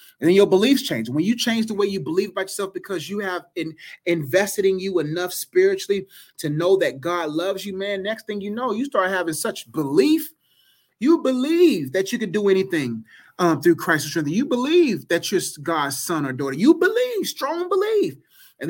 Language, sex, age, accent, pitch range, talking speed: English, male, 30-49, American, 165-245 Hz, 200 wpm